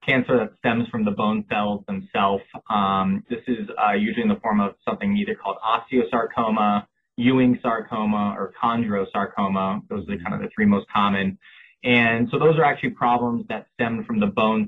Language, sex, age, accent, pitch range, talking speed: English, male, 20-39, American, 100-160 Hz, 180 wpm